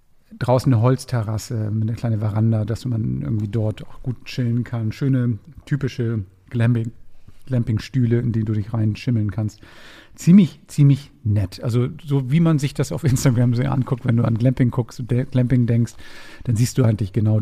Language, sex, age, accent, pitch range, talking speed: German, male, 50-69, German, 115-140 Hz, 175 wpm